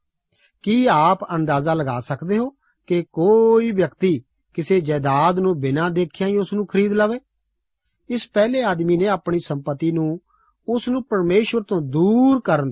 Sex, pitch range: male, 150-205 Hz